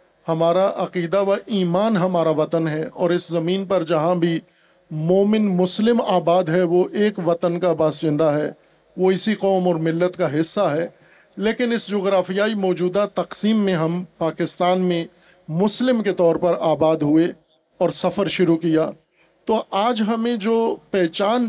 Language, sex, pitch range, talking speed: Urdu, male, 175-205 Hz, 155 wpm